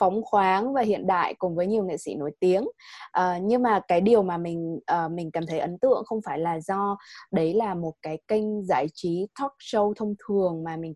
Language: Vietnamese